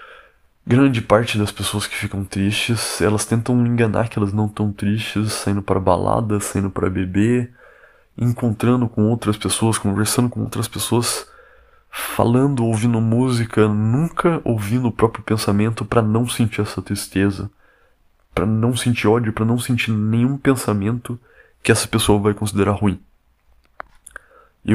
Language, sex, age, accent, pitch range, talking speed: Portuguese, male, 20-39, Brazilian, 95-120 Hz, 140 wpm